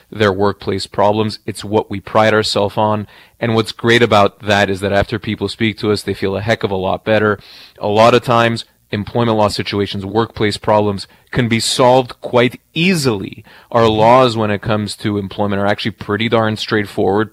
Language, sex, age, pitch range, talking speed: English, male, 30-49, 105-120 Hz, 190 wpm